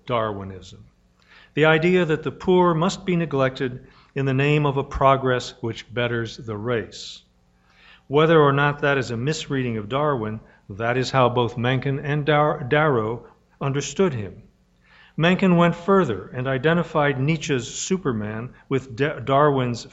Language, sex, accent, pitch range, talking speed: English, male, American, 110-150 Hz, 140 wpm